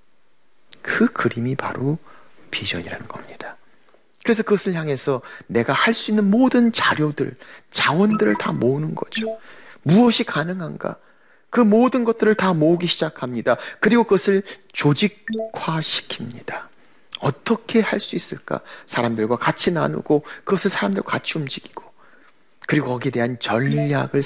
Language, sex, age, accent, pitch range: Korean, male, 40-59, native, 135-215 Hz